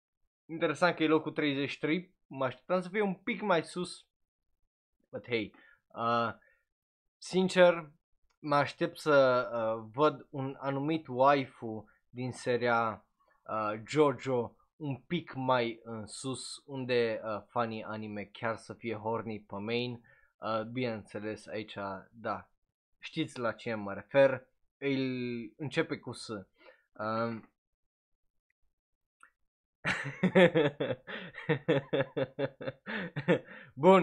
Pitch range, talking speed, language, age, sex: 115-150 Hz, 105 wpm, Romanian, 20-39, male